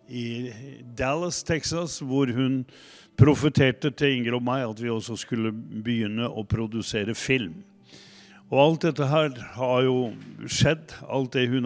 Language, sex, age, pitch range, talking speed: English, male, 50-69, 115-150 Hz, 145 wpm